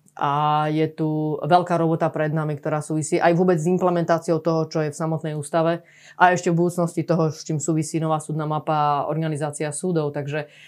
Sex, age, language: female, 20-39, Slovak